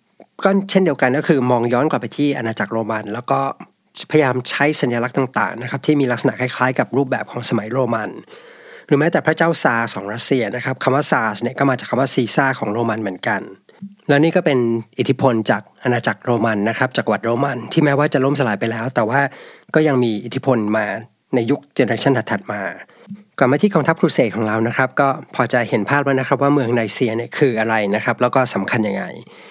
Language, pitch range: English, 115-145 Hz